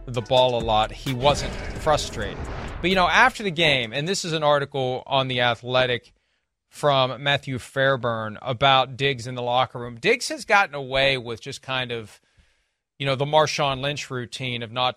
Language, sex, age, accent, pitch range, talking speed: English, male, 40-59, American, 130-155 Hz, 185 wpm